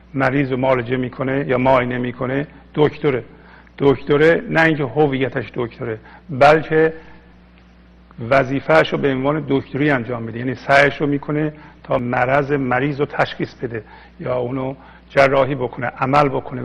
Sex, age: male, 50-69